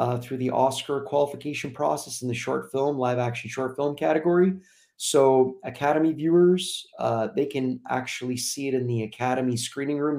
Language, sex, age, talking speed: English, male, 30-49, 170 wpm